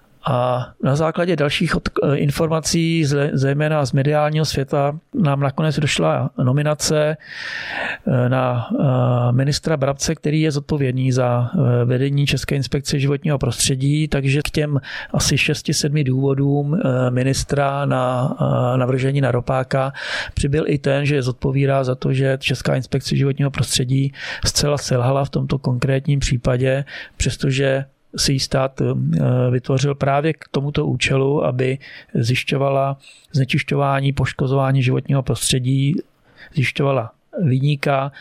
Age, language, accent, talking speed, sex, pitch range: 40-59, Czech, native, 110 wpm, male, 130-145 Hz